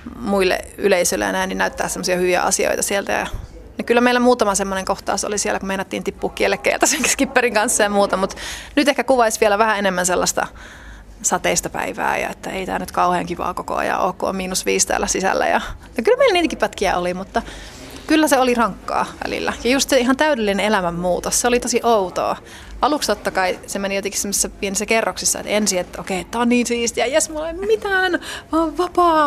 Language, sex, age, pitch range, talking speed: Finnish, female, 30-49, 190-245 Hz, 195 wpm